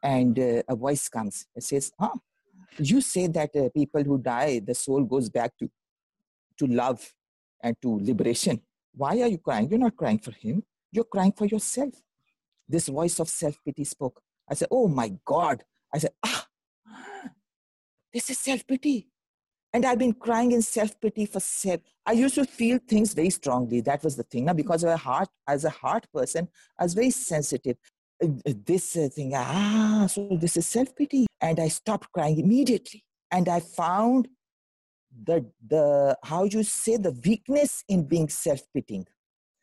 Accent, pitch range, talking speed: Indian, 155-235 Hz, 170 wpm